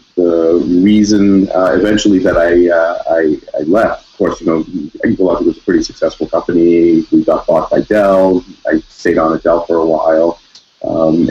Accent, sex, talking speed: American, male, 180 wpm